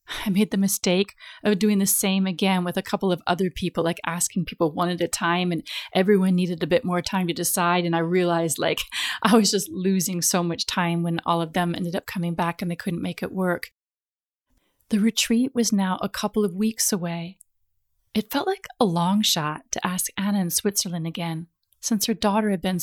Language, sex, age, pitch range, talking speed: English, female, 30-49, 175-225 Hz, 215 wpm